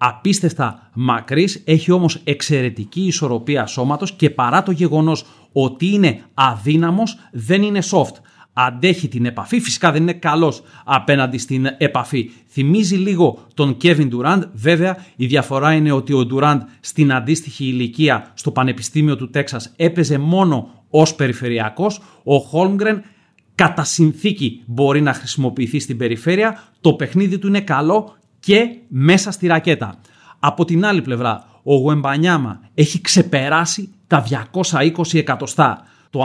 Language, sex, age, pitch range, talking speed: Greek, male, 30-49, 130-175 Hz, 130 wpm